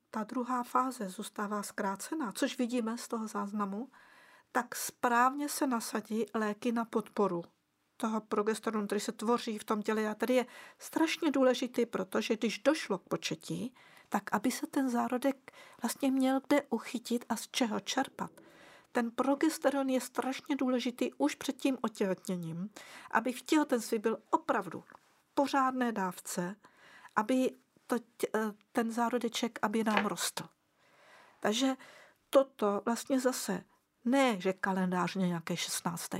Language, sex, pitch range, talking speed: Slovak, female, 215-275 Hz, 135 wpm